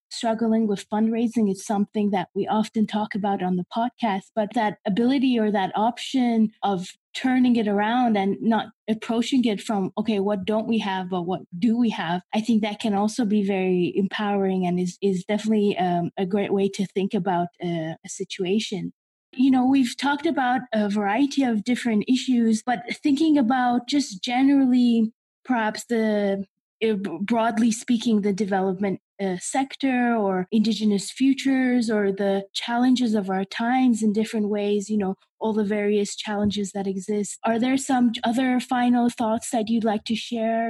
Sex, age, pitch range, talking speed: female, 20-39, 200-235 Hz, 170 wpm